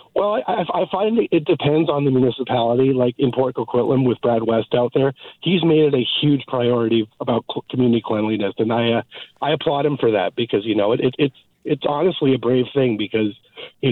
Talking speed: 205 wpm